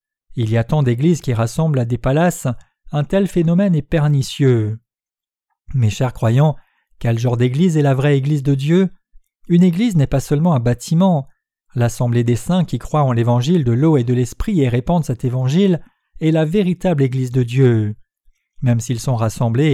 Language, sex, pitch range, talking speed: French, male, 120-170 Hz, 180 wpm